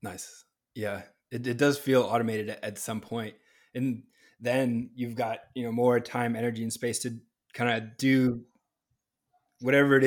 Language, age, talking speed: English, 20-39, 165 wpm